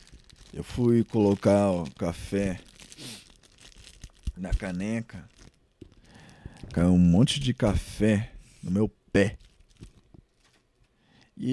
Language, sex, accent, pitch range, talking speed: Portuguese, male, Brazilian, 85-115 Hz, 85 wpm